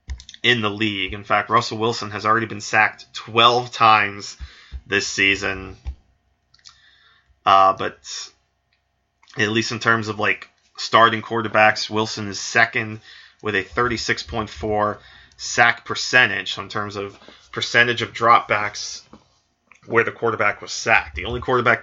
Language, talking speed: English, 130 wpm